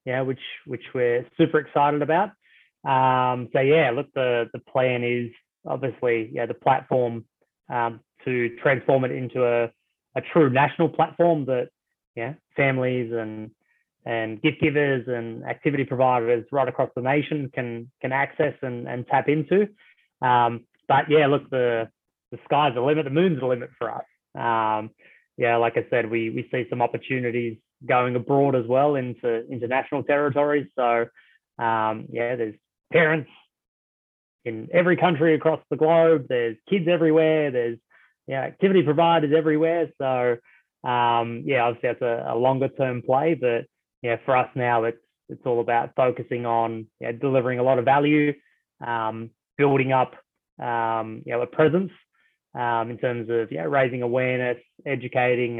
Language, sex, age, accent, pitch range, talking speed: English, male, 20-39, Australian, 120-145 Hz, 155 wpm